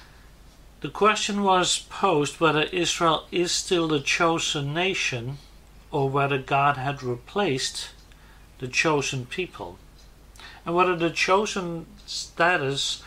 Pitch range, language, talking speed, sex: 135-180 Hz, English, 110 wpm, male